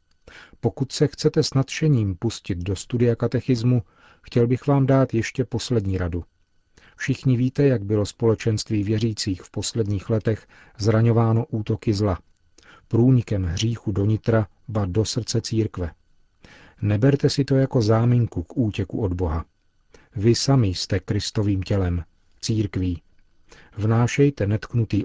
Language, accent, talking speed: Czech, native, 120 wpm